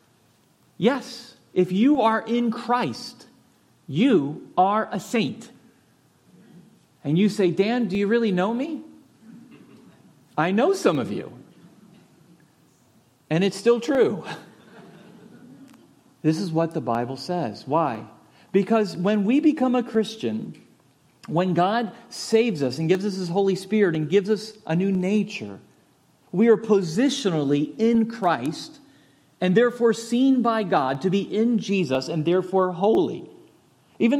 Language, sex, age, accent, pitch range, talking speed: English, male, 40-59, American, 170-225 Hz, 130 wpm